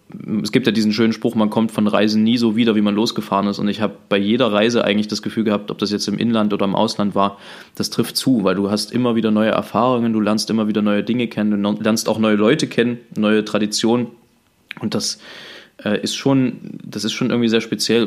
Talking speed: 230 wpm